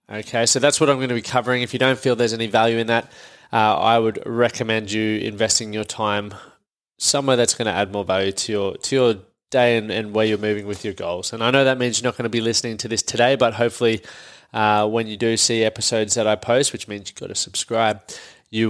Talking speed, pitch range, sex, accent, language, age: 250 wpm, 110-130 Hz, male, Australian, English, 20-39